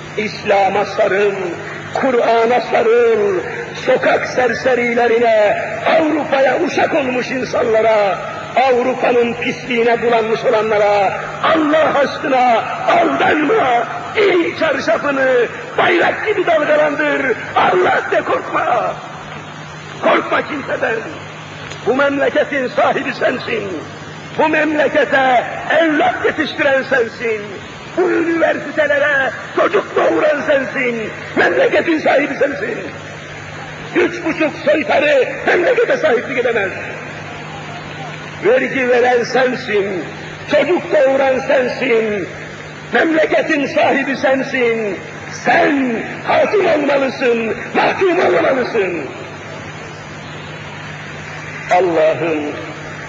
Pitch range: 225-315 Hz